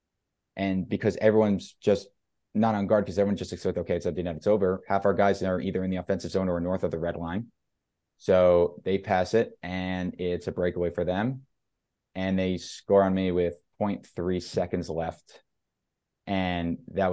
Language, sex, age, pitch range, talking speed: English, male, 20-39, 90-100 Hz, 185 wpm